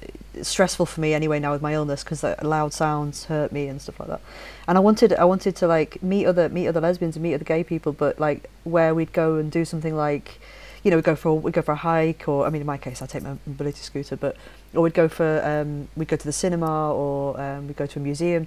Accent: British